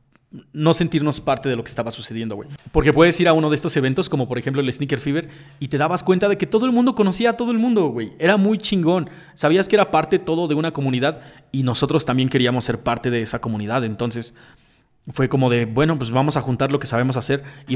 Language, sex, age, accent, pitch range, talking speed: Spanish, male, 30-49, Mexican, 125-155 Hz, 245 wpm